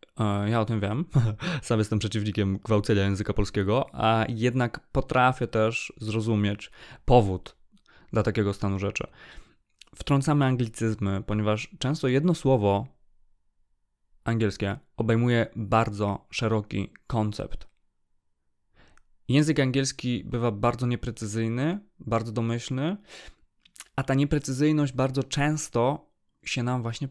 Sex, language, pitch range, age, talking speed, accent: male, Polish, 110-130 Hz, 20-39, 100 wpm, native